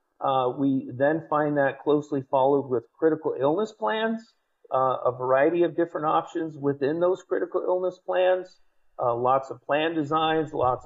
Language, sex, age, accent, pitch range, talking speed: English, male, 50-69, American, 135-165 Hz, 155 wpm